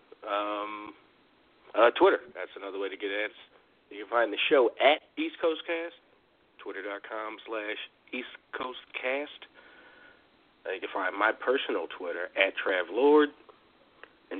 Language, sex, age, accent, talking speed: English, male, 40-59, American, 140 wpm